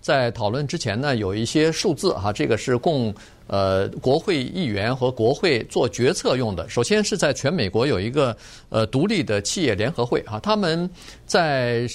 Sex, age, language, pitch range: male, 50-69, Chinese, 105-135 Hz